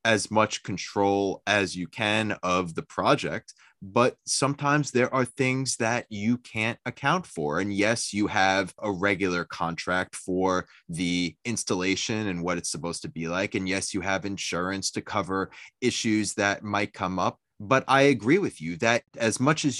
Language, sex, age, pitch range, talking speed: English, male, 20-39, 100-135 Hz, 175 wpm